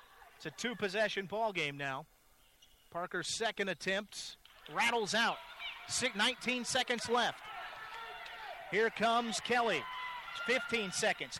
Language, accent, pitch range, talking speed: English, American, 190-235 Hz, 100 wpm